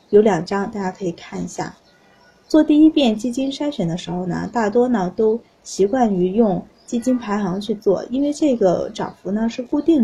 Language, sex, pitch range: Chinese, female, 200-265 Hz